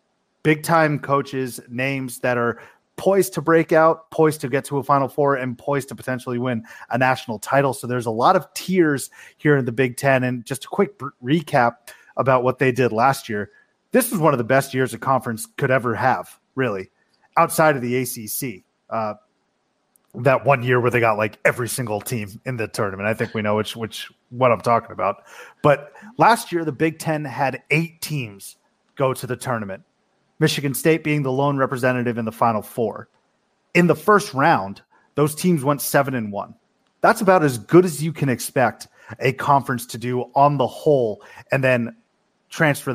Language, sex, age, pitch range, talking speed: English, male, 30-49, 120-150 Hz, 195 wpm